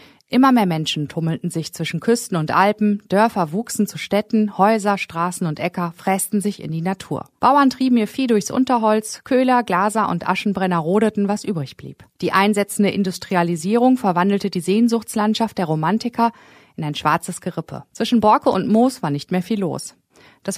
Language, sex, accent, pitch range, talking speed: German, female, German, 175-225 Hz, 170 wpm